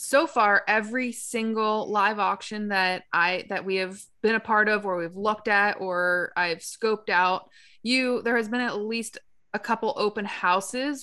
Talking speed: 180 wpm